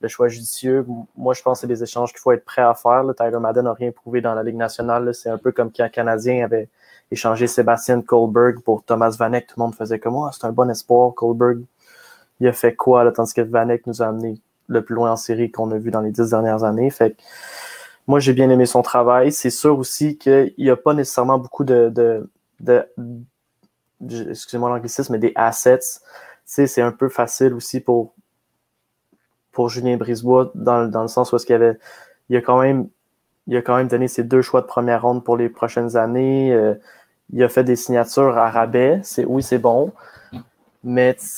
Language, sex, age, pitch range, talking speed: French, male, 20-39, 115-125 Hz, 220 wpm